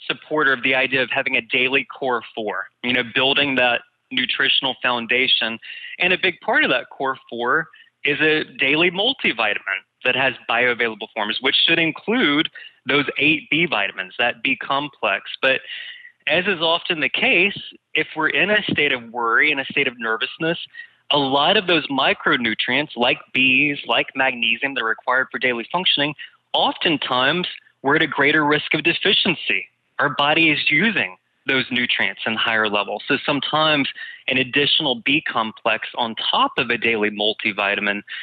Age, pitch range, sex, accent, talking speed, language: 20-39, 115-150 Hz, male, American, 160 wpm, English